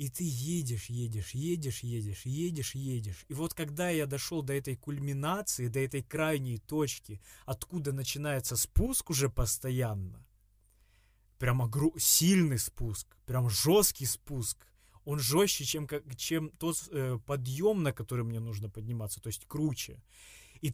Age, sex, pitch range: 20-39, male, 115-155 Hz